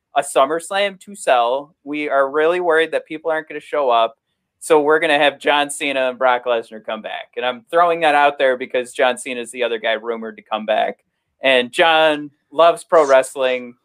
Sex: male